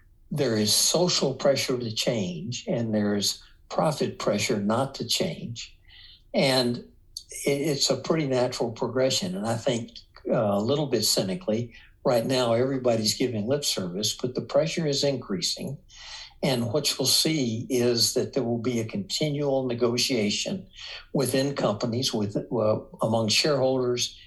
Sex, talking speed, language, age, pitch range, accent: male, 140 wpm, English, 60-79, 110-135 Hz, American